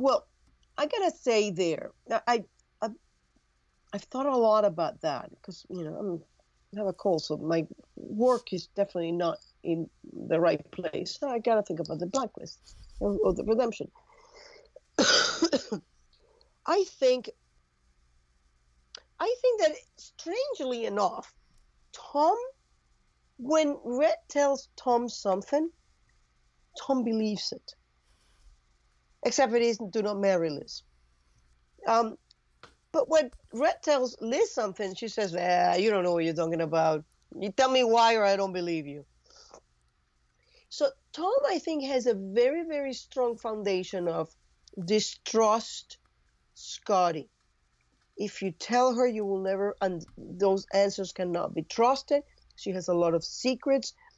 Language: English